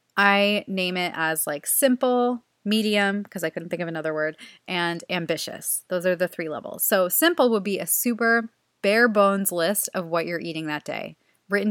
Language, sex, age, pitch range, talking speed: English, female, 20-39, 170-215 Hz, 190 wpm